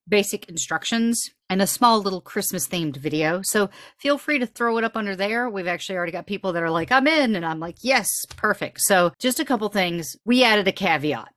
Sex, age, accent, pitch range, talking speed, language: female, 40-59, American, 170-210 Hz, 220 wpm, English